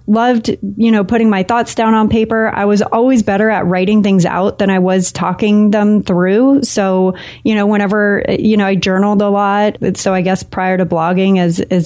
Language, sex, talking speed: English, female, 210 wpm